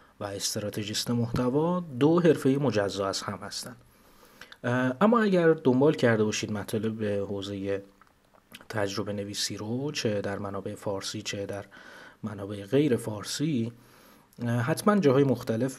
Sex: male